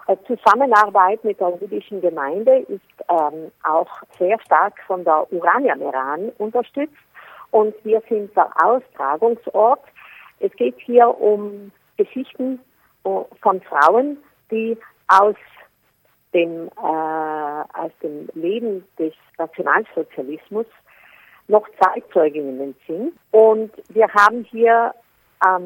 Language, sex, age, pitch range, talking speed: German, female, 50-69, 180-245 Hz, 105 wpm